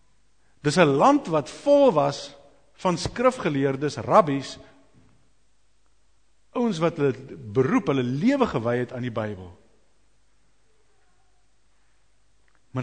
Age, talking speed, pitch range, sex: 60-79, 100 wpm, 115-165 Hz, male